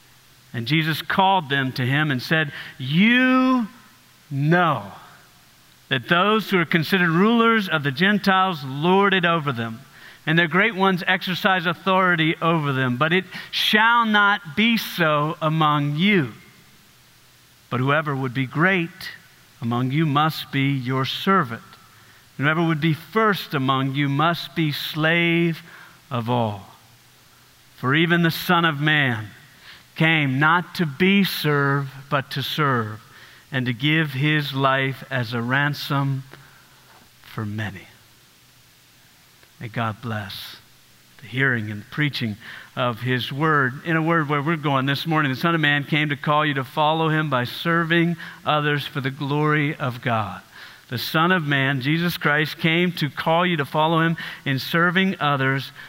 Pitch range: 130-170 Hz